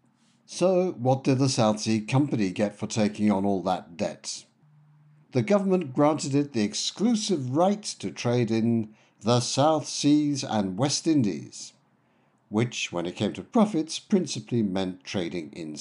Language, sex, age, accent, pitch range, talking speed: English, male, 60-79, British, 110-175 Hz, 150 wpm